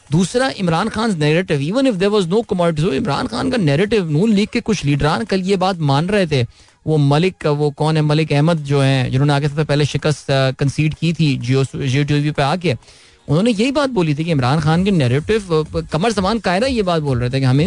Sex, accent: male, native